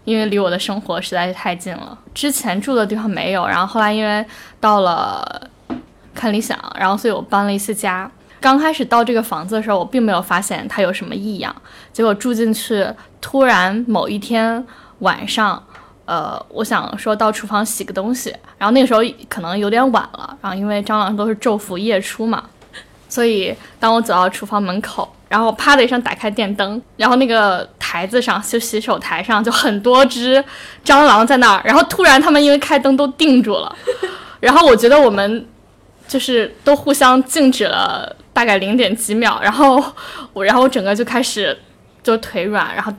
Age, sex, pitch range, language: 10-29, female, 205-250 Hz, Chinese